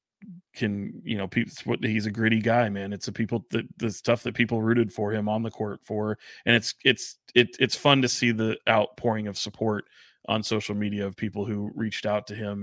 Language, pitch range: English, 100-115 Hz